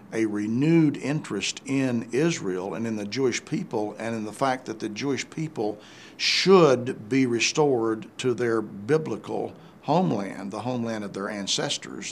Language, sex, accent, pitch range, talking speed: English, male, American, 100-120 Hz, 150 wpm